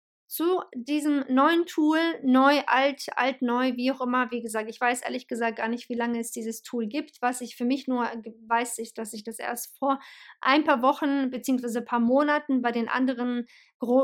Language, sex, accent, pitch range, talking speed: German, female, German, 230-270 Hz, 205 wpm